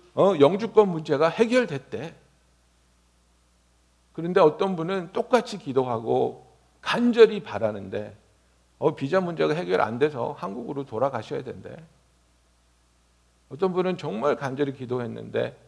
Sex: male